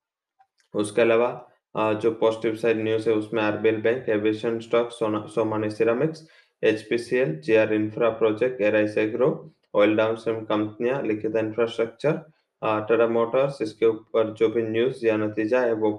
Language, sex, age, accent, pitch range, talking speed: English, male, 20-39, Indian, 105-115 Hz, 140 wpm